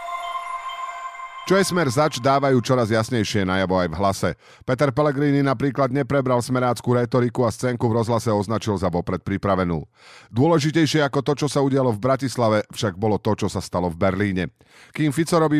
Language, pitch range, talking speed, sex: Slovak, 105-130 Hz, 170 wpm, male